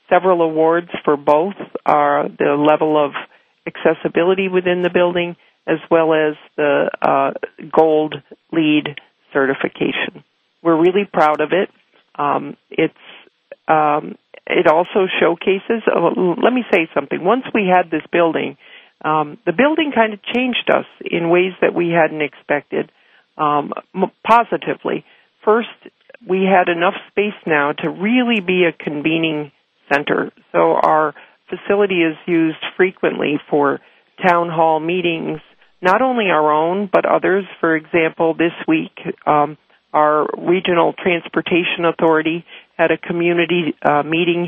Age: 50-69